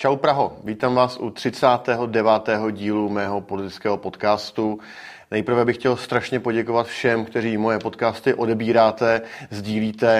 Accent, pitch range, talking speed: native, 105-120 Hz, 125 wpm